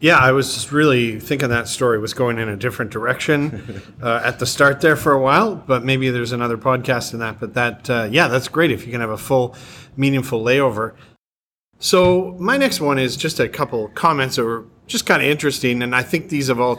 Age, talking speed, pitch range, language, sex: 30-49, 230 wpm, 120-140 Hz, English, male